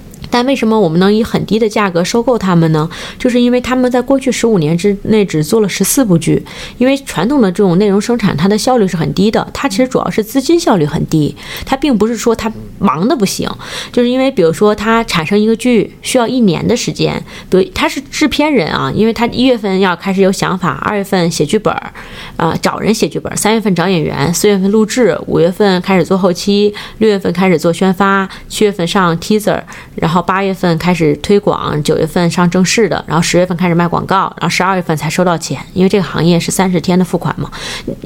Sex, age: female, 20-39